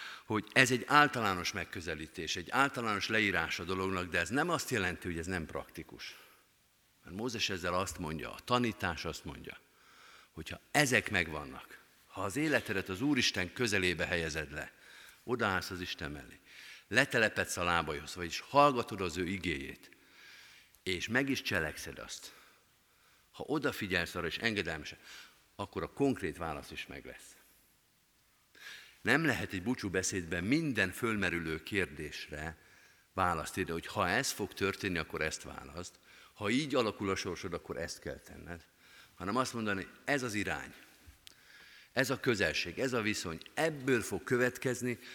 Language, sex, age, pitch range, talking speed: Hungarian, male, 50-69, 90-125 Hz, 145 wpm